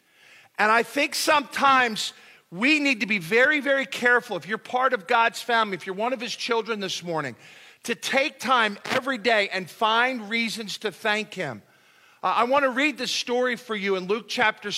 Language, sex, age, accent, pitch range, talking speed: English, male, 50-69, American, 200-255 Hz, 195 wpm